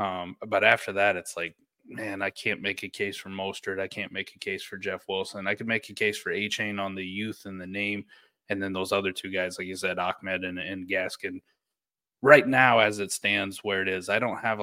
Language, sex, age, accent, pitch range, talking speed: English, male, 20-39, American, 95-110 Hz, 240 wpm